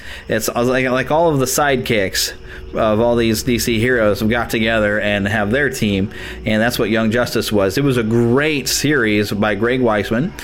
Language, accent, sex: English, American, male